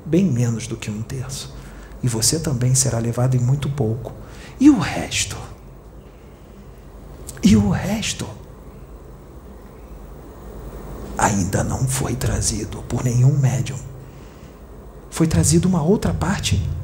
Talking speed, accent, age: 115 wpm, Brazilian, 50-69